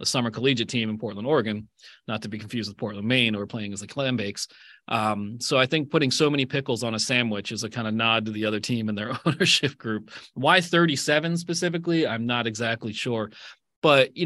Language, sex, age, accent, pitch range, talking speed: English, male, 30-49, American, 115-140 Hz, 225 wpm